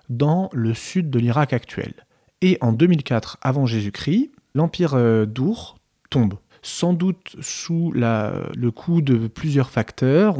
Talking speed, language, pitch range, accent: 125 wpm, French, 115-150 Hz, French